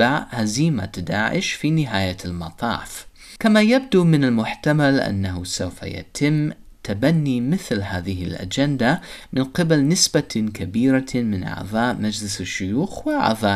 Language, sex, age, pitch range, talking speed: English, male, 30-49, 100-150 Hz, 110 wpm